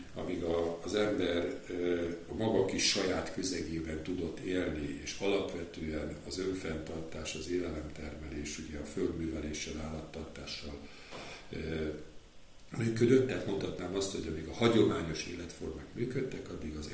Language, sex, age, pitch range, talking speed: Hungarian, male, 50-69, 80-95 Hz, 110 wpm